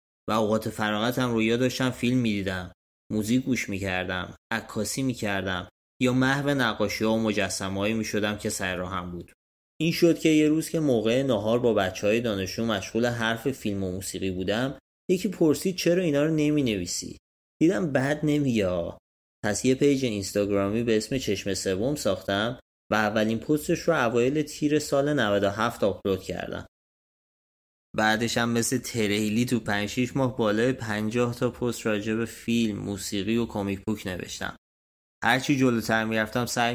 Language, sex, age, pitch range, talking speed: Persian, male, 30-49, 95-125 Hz, 150 wpm